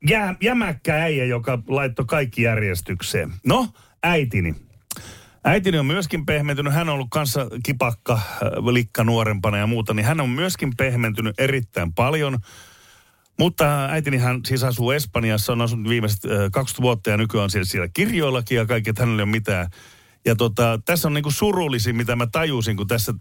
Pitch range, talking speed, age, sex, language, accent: 100-130 Hz, 160 wpm, 40-59, male, Finnish, native